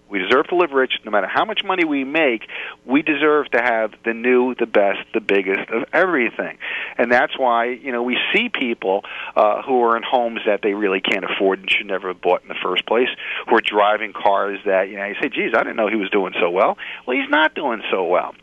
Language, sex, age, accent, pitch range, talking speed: English, male, 40-59, American, 105-140 Hz, 245 wpm